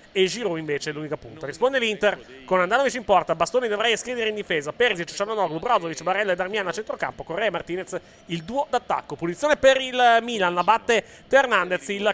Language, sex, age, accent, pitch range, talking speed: Italian, male, 30-49, native, 140-200 Hz, 195 wpm